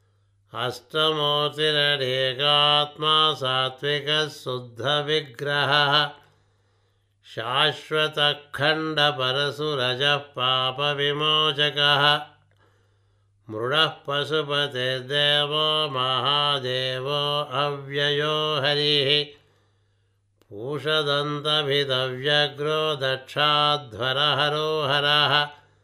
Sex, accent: male, native